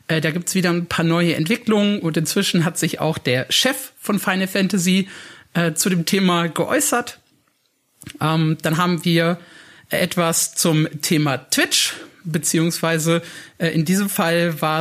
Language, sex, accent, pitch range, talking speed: German, male, German, 160-195 Hz, 150 wpm